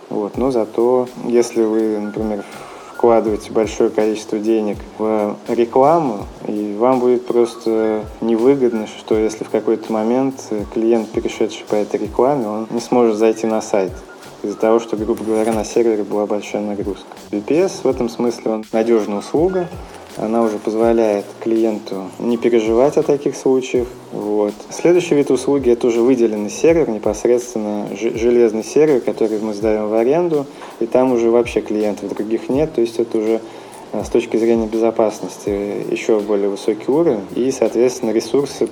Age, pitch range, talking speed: 20-39, 105-120 Hz, 150 wpm